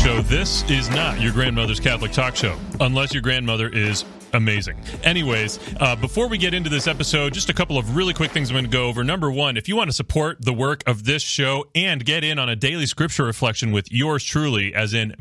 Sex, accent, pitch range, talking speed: male, American, 110-150 Hz, 235 wpm